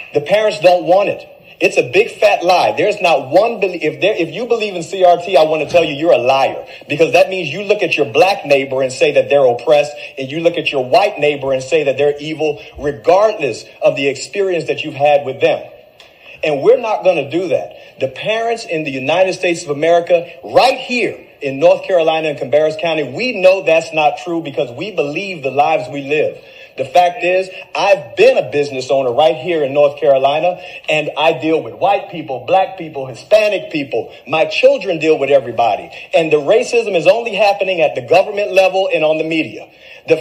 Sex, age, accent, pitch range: male, 40-59, American, 155-230 Hz